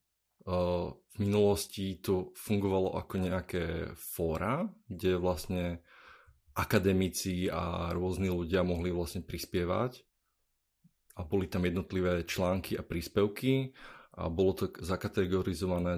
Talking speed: 100 wpm